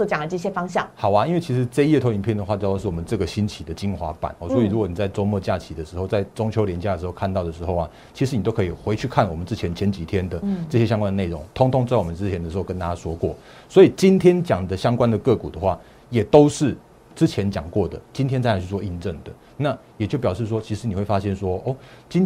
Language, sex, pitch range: Chinese, male, 90-120 Hz